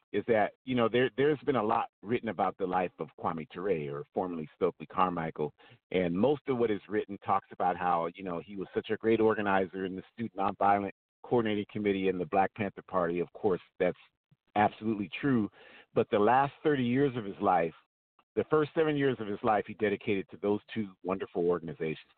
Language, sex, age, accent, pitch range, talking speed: English, male, 50-69, American, 95-120 Hz, 205 wpm